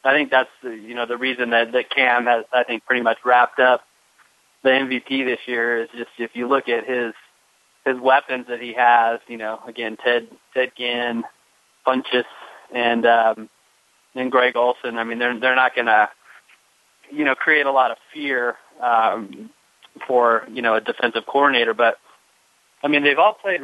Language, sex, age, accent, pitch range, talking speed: English, male, 30-49, American, 120-135 Hz, 180 wpm